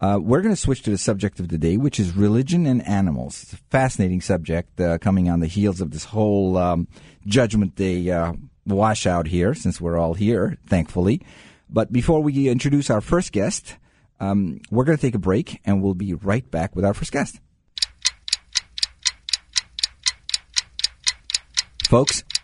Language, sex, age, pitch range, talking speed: English, male, 50-69, 90-120 Hz, 170 wpm